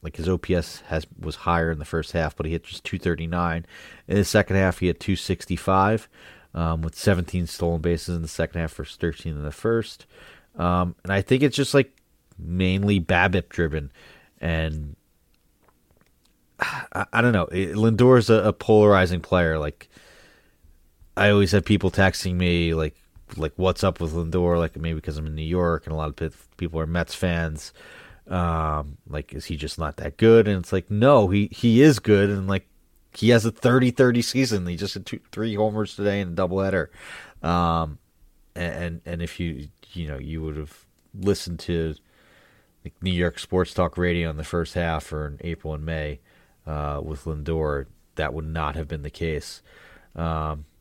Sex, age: male, 30-49